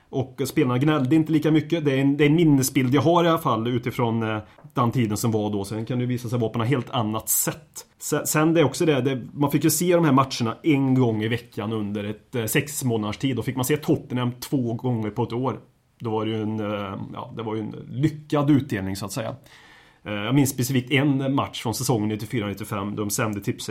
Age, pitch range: 30-49, 115-145 Hz